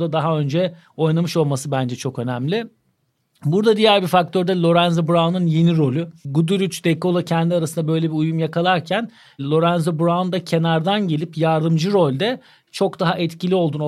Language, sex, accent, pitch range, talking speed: Turkish, male, native, 150-185 Hz, 150 wpm